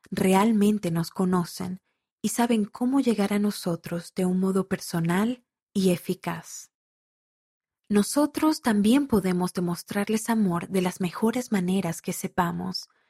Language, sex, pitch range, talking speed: Spanish, female, 175-210 Hz, 120 wpm